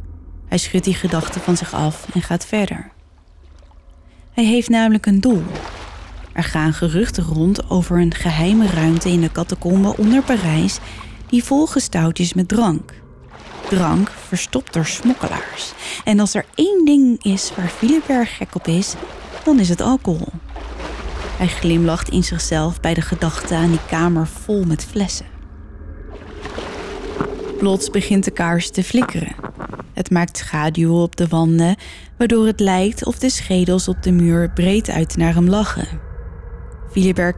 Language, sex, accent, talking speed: Dutch, female, Dutch, 150 wpm